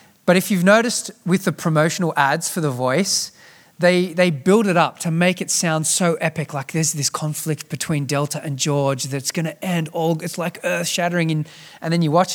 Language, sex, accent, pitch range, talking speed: English, male, Australian, 130-175 Hz, 215 wpm